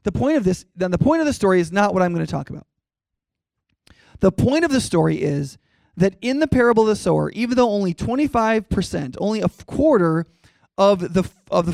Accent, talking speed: American, 205 wpm